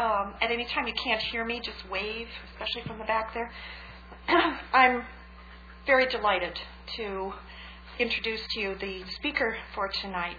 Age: 40-59